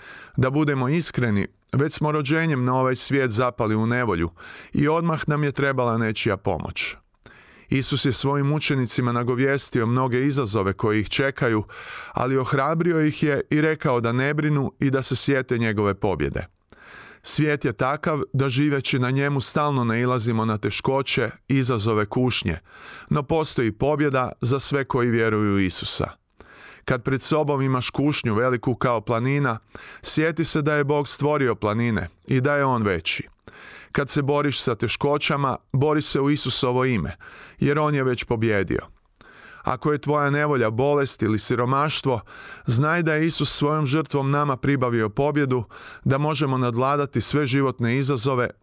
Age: 30-49